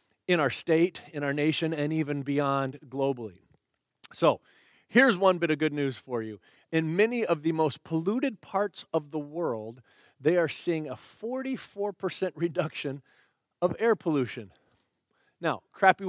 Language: English